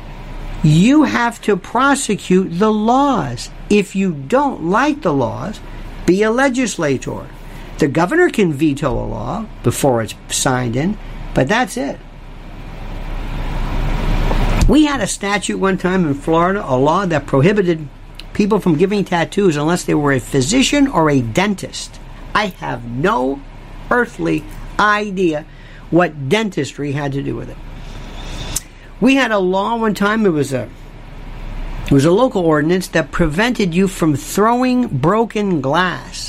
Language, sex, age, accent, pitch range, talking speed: English, male, 50-69, American, 140-210 Hz, 140 wpm